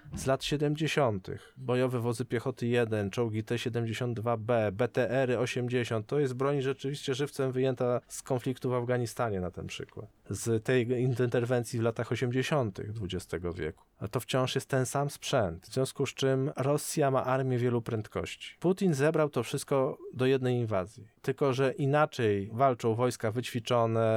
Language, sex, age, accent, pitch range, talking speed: Polish, male, 20-39, native, 115-135 Hz, 150 wpm